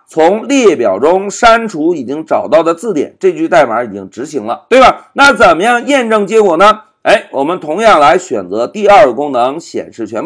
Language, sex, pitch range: Chinese, male, 210-315 Hz